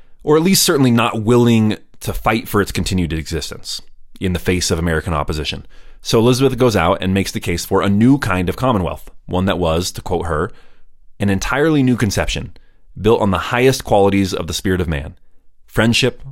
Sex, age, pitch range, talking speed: male, 30-49, 85-105 Hz, 195 wpm